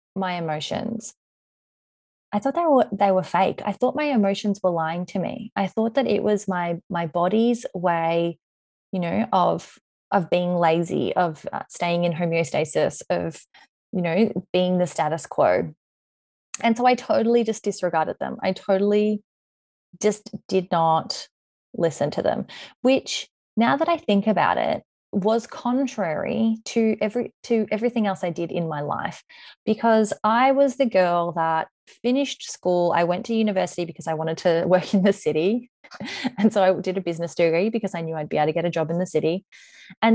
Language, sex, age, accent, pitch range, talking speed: English, female, 20-39, Australian, 175-230 Hz, 175 wpm